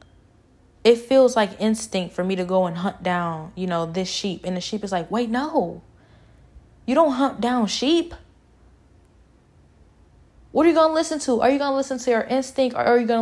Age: 10-29